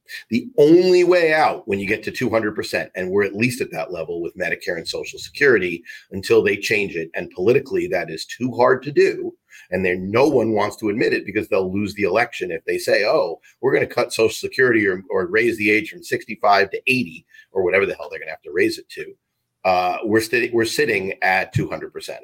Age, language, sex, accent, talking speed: 40-59, English, male, American, 235 wpm